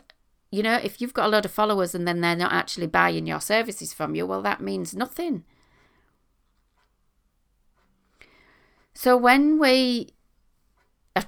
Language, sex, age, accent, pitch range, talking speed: English, female, 40-59, British, 165-255 Hz, 145 wpm